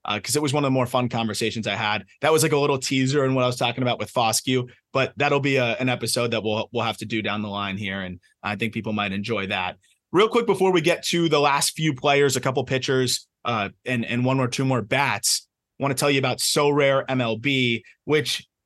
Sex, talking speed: male, 255 wpm